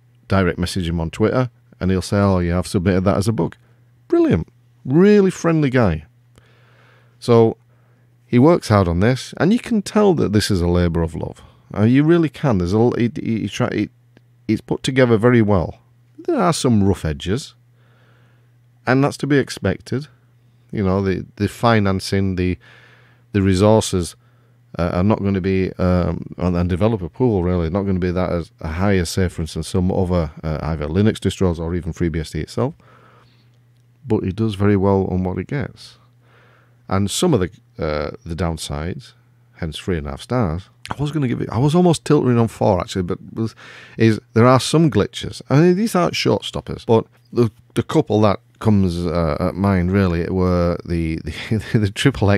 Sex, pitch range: male, 90-120 Hz